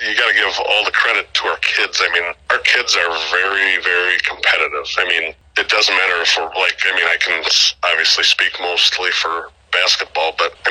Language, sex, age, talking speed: English, male, 40-59, 205 wpm